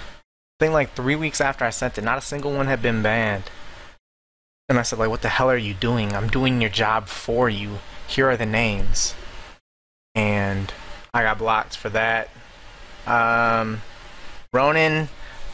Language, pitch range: English, 110-130 Hz